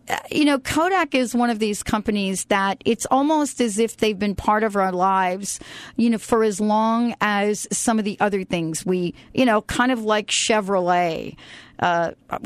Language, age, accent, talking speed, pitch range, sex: English, 40-59, American, 180 wpm, 195-245 Hz, female